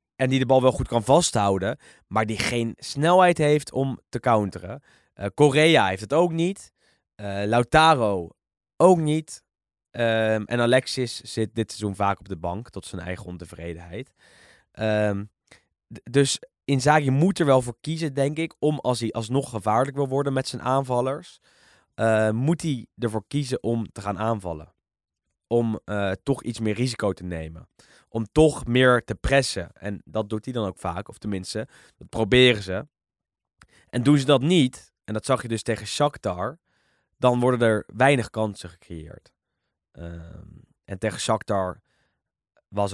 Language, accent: Dutch, Dutch